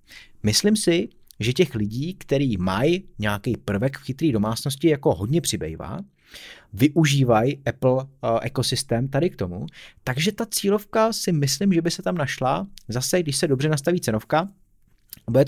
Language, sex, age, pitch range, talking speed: Czech, male, 30-49, 115-145 Hz, 150 wpm